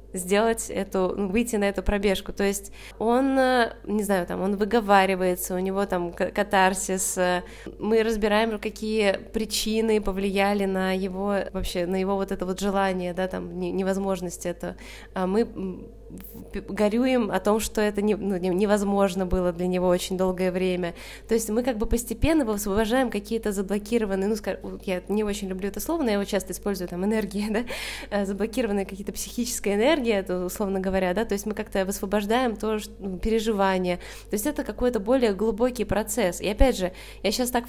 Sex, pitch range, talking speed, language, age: female, 190-225 Hz, 165 wpm, Russian, 20-39